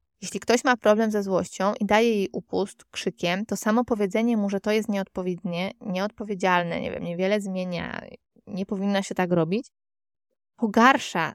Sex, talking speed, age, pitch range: female, 160 wpm, 20-39, 185-225 Hz